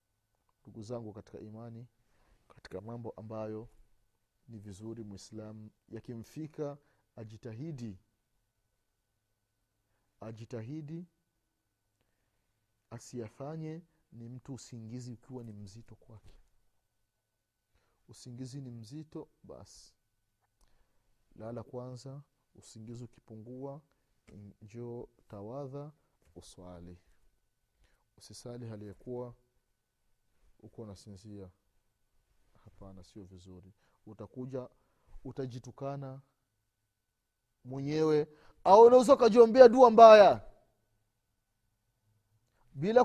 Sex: male